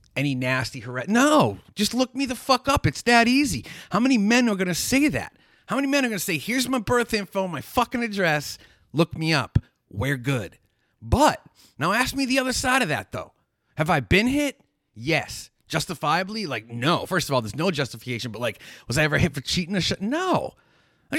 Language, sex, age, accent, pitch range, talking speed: English, male, 30-49, American, 125-195 Hz, 205 wpm